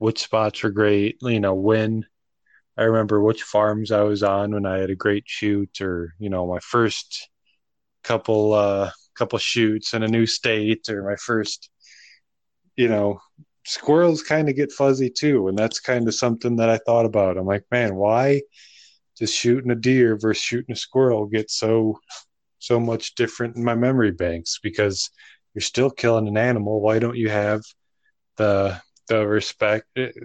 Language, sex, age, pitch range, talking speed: English, male, 20-39, 105-120 Hz, 170 wpm